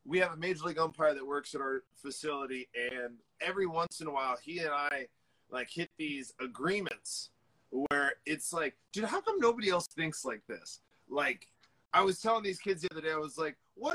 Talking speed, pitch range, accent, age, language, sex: 205 wpm, 145-185 Hz, American, 30-49, English, male